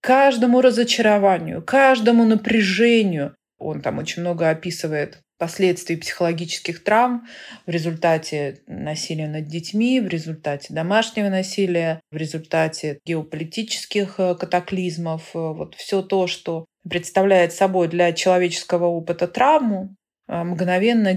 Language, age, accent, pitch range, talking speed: Russian, 30-49, native, 170-200 Hz, 100 wpm